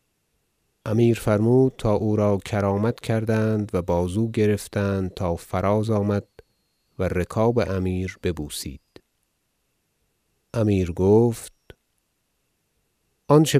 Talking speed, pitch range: 90 wpm, 90-110 Hz